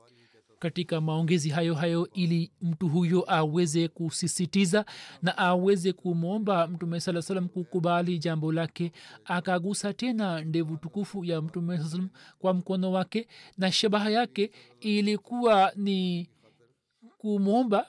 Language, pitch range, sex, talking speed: Swahili, 185-215 Hz, male, 115 wpm